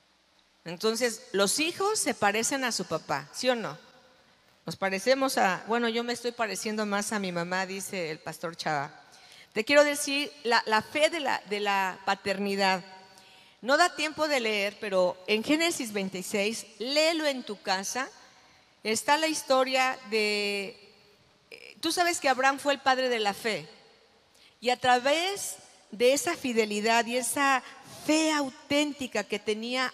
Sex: female